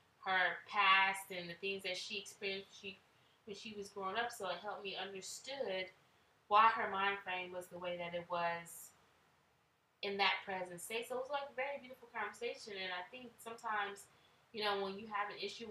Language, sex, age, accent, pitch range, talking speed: English, female, 20-39, American, 190-250 Hz, 200 wpm